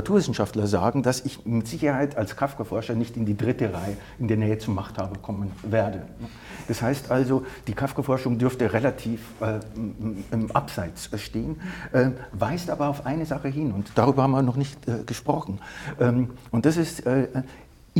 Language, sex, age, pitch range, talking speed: German, male, 50-69, 110-140 Hz, 170 wpm